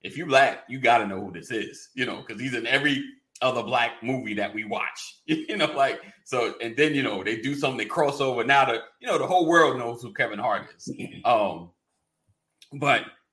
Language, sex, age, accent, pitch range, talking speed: English, male, 30-49, American, 100-125 Hz, 225 wpm